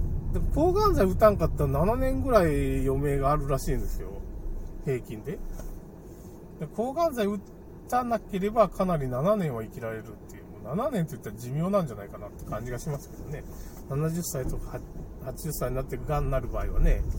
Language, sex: Japanese, male